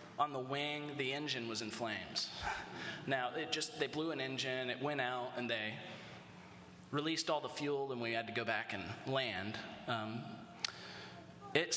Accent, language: American, English